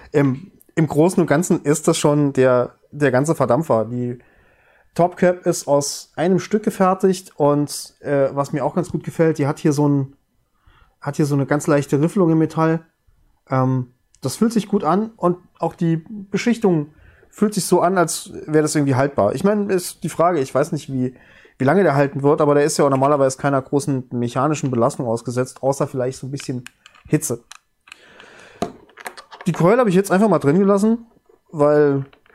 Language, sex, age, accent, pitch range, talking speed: German, male, 30-49, German, 140-195 Hz, 185 wpm